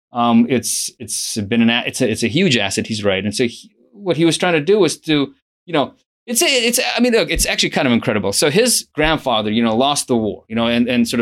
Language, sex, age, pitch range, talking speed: English, male, 30-49, 110-145 Hz, 275 wpm